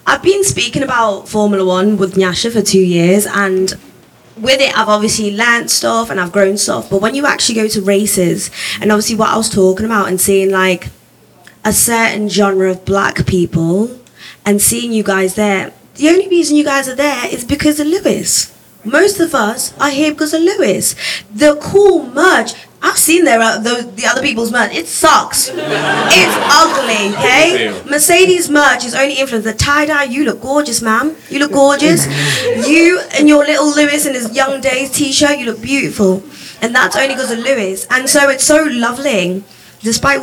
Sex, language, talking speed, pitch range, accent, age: female, English, 185 wpm, 195-280 Hz, British, 20-39